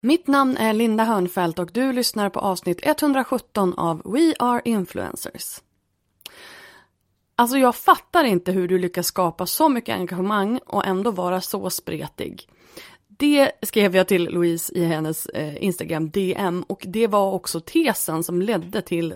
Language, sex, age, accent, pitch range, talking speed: Swedish, female, 30-49, native, 170-240 Hz, 150 wpm